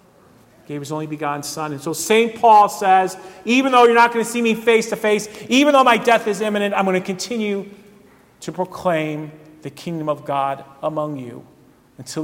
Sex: male